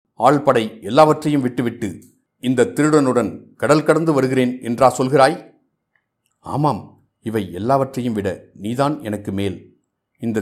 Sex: male